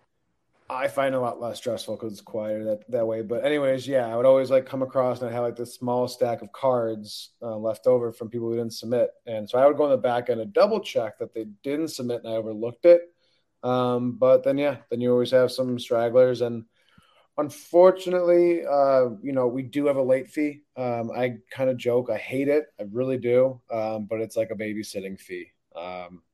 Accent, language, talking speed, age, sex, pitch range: American, English, 225 wpm, 20-39, male, 110-135 Hz